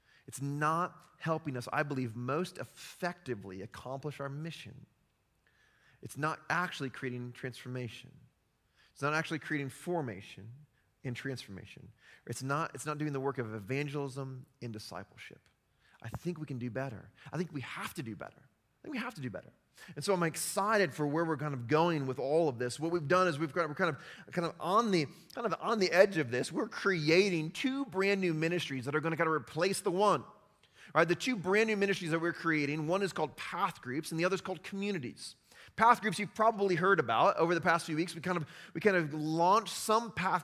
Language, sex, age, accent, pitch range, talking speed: English, male, 30-49, American, 145-185 Hz, 215 wpm